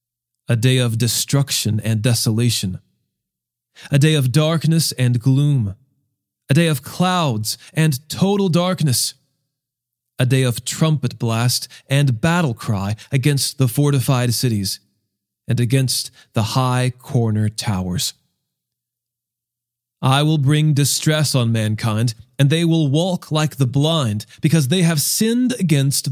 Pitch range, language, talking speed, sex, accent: 120-150 Hz, English, 125 wpm, male, American